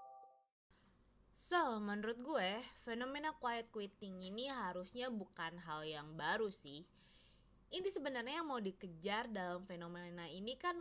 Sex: female